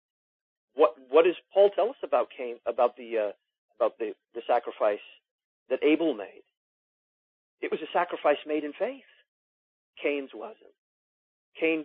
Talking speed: 140 wpm